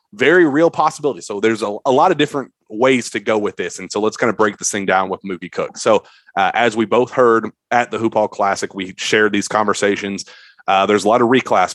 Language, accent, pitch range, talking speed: English, American, 100-120 Hz, 245 wpm